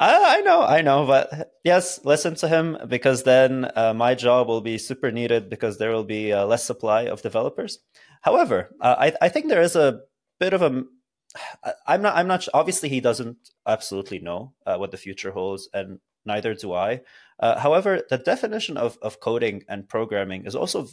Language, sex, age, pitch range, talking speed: English, male, 30-49, 110-135 Hz, 190 wpm